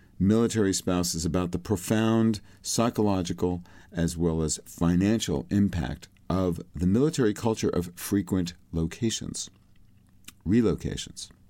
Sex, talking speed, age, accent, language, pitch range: male, 100 wpm, 50-69, American, English, 85-110 Hz